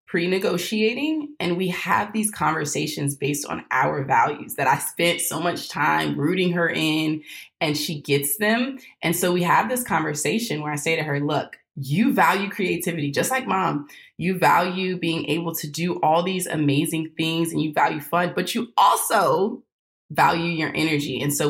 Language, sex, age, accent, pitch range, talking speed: English, female, 20-39, American, 150-190 Hz, 175 wpm